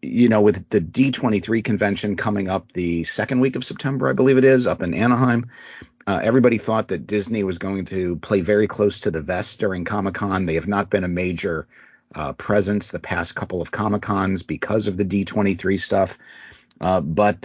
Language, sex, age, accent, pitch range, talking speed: English, male, 40-59, American, 95-115 Hz, 195 wpm